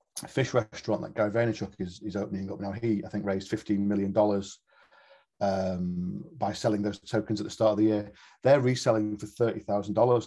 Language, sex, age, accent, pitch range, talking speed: English, male, 40-59, British, 100-115 Hz, 200 wpm